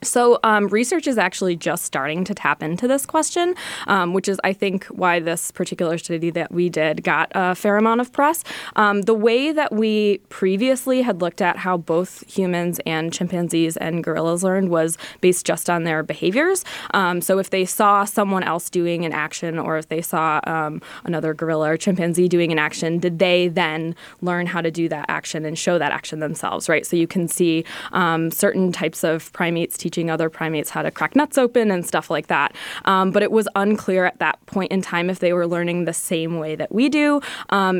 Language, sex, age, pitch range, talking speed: English, female, 20-39, 170-200 Hz, 210 wpm